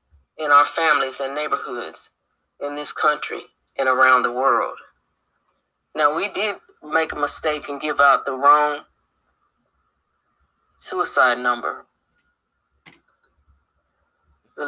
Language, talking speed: English, 105 wpm